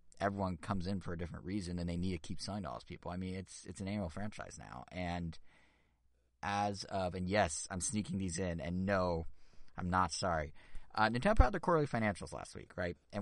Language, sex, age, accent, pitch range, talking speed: English, male, 30-49, American, 90-130 Hz, 225 wpm